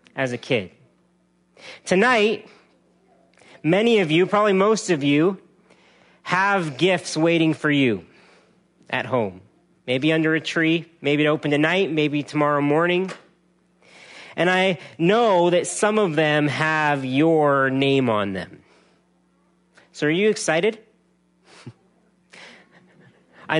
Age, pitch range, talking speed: 40-59, 145-195 Hz, 115 wpm